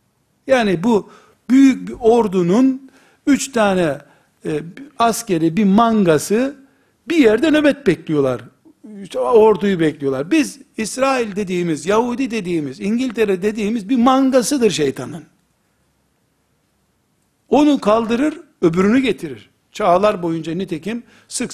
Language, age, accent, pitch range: Turkish, 60-79, native, 185-245 Hz